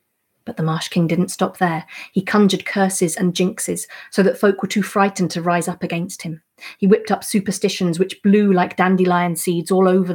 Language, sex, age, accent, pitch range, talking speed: English, female, 30-49, British, 175-195 Hz, 200 wpm